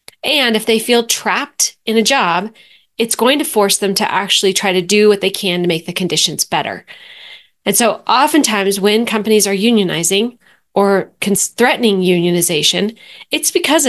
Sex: female